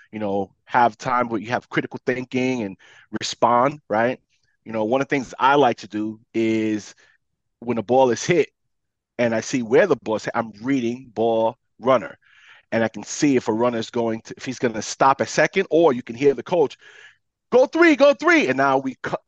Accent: American